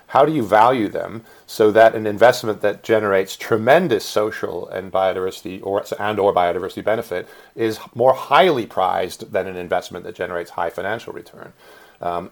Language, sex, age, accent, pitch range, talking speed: English, male, 40-59, American, 90-115 Hz, 160 wpm